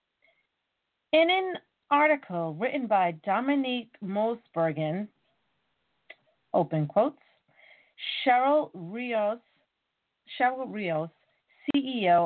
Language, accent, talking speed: English, American, 70 wpm